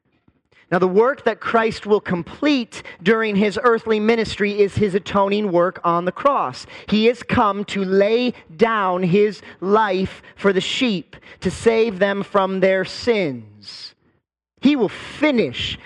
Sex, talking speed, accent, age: male, 145 wpm, American, 30-49